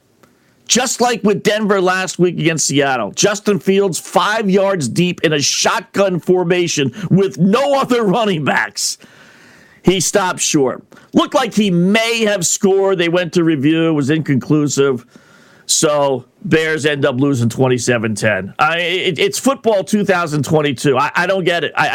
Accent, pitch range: American, 145-195 Hz